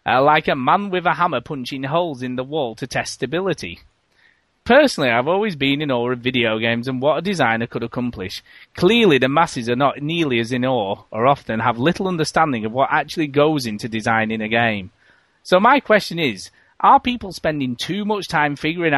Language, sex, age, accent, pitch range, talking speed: English, male, 30-49, British, 120-150 Hz, 200 wpm